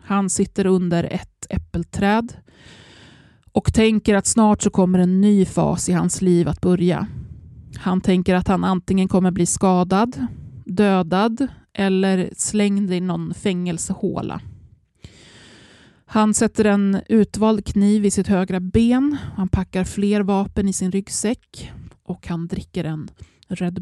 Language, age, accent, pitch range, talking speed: Swedish, 20-39, native, 175-210 Hz, 135 wpm